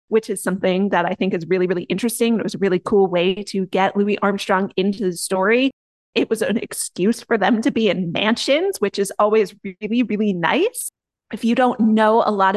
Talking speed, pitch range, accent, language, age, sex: 215 wpm, 190-230 Hz, American, English, 30-49, female